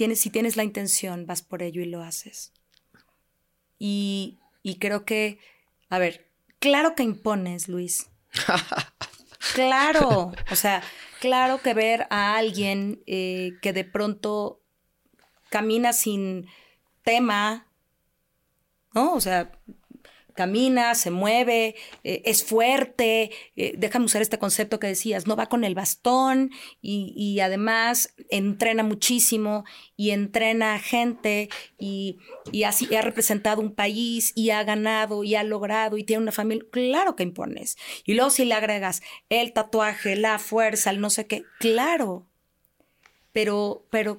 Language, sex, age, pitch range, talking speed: Spanish, female, 30-49, 200-230 Hz, 135 wpm